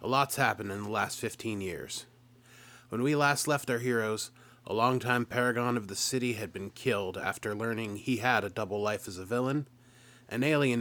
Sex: male